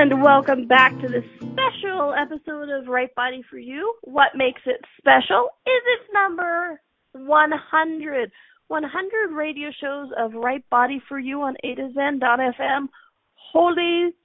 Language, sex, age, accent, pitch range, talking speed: English, female, 30-49, American, 245-340 Hz, 140 wpm